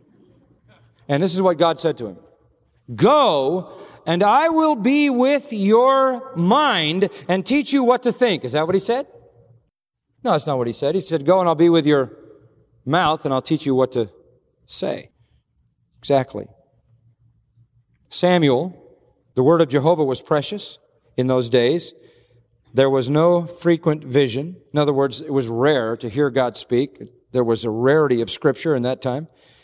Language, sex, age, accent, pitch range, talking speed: English, male, 40-59, American, 120-175 Hz, 170 wpm